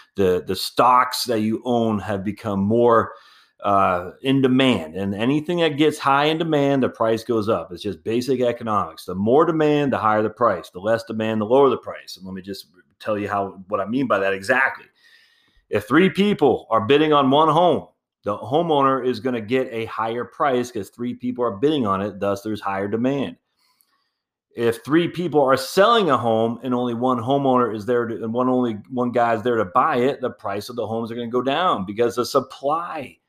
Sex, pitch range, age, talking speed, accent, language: male, 110-140 Hz, 30-49, 215 wpm, American, English